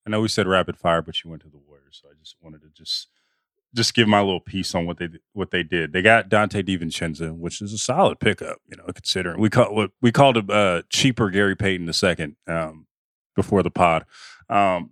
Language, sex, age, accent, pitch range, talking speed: English, male, 30-49, American, 90-125 Hz, 225 wpm